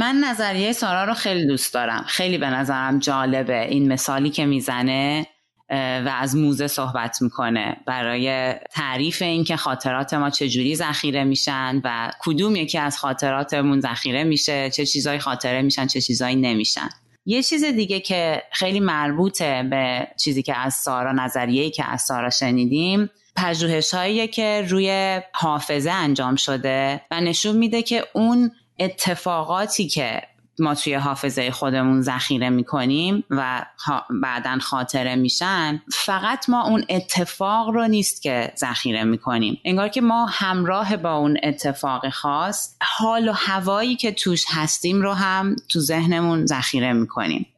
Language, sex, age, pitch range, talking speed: Persian, female, 30-49, 130-185 Hz, 145 wpm